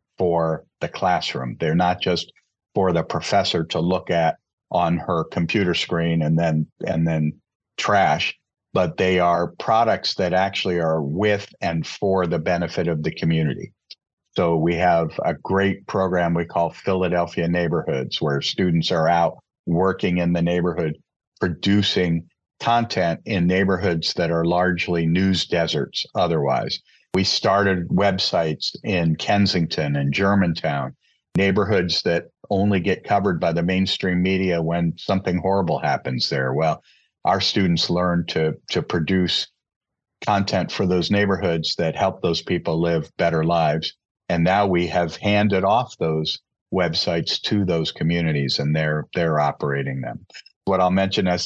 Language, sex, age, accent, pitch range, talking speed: English, male, 50-69, American, 80-95 Hz, 145 wpm